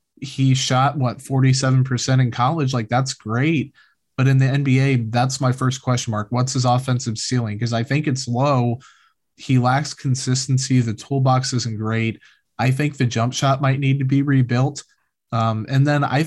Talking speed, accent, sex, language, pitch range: 175 wpm, American, male, English, 120-140 Hz